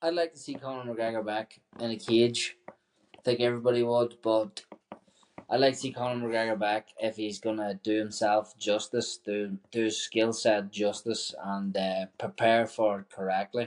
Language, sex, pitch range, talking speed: English, male, 105-120 Hz, 180 wpm